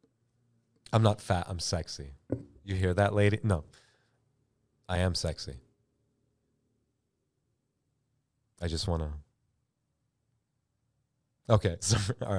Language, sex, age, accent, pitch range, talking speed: English, male, 30-49, American, 110-145 Hz, 90 wpm